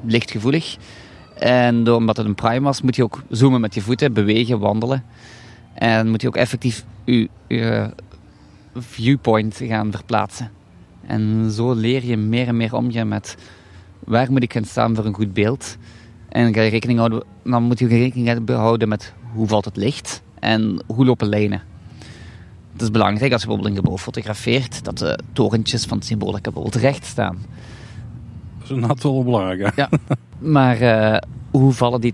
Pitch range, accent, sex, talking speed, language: 110-125 Hz, Dutch, male, 160 wpm, Dutch